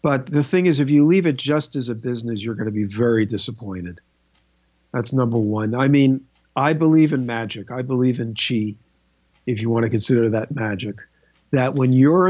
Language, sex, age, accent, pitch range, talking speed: English, male, 50-69, American, 115-145 Hz, 200 wpm